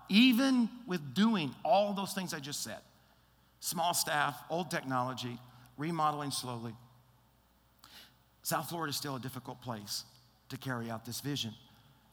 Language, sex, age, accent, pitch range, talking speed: English, male, 50-69, American, 125-165 Hz, 135 wpm